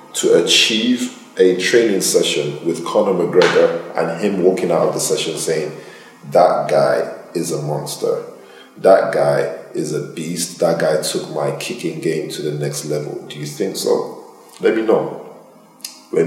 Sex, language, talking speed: male, English, 160 wpm